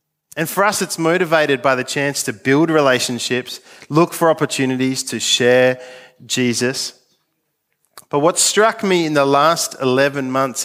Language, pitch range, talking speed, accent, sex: English, 130-180 Hz, 145 wpm, Australian, male